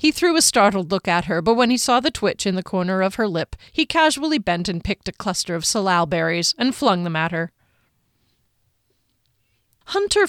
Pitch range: 175-235 Hz